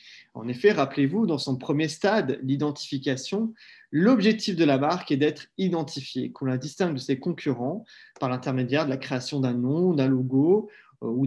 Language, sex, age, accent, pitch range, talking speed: French, male, 30-49, French, 135-175 Hz, 165 wpm